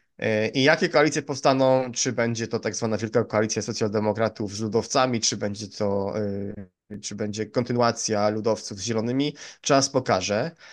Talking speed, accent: 140 wpm, native